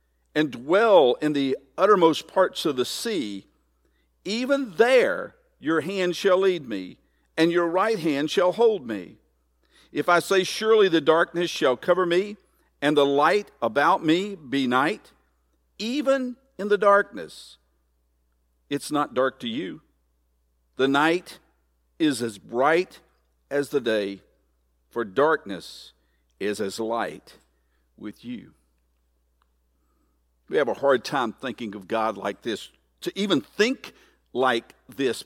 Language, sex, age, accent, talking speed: English, male, 50-69, American, 135 wpm